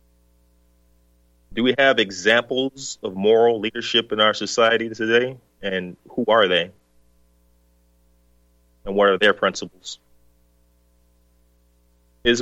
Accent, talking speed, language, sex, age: American, 100 wpm, English, male, 30-49